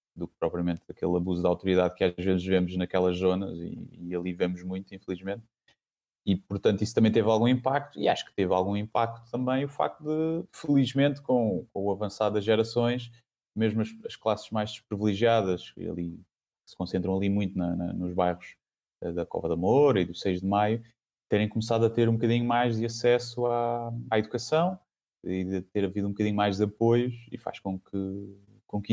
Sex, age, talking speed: male, 20-39, 195 wpm